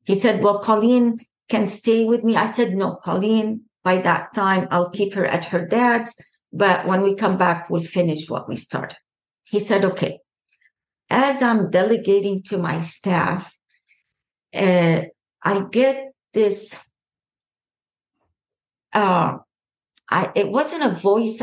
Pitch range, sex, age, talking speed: 180-225 Hz, female, 50-69, 140 wpm